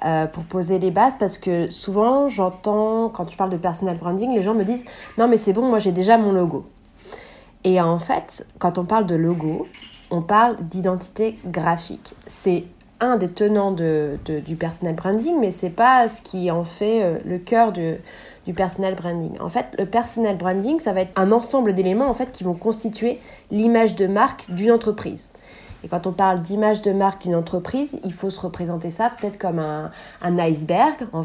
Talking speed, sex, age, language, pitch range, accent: 190 wpm, female, 30-49, French, 170-215 Hz, French